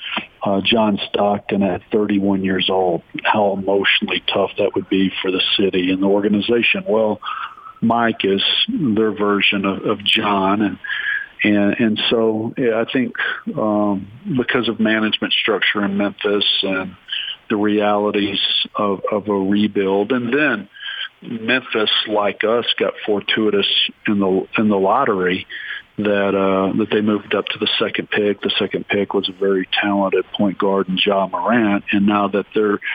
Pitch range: 100-110 Hz